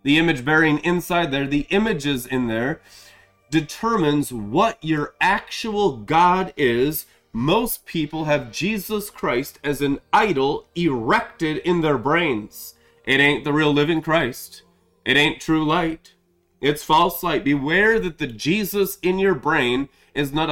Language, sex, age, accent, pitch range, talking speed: English, male, 30-49, American, 150-210 Hz, 140 wpm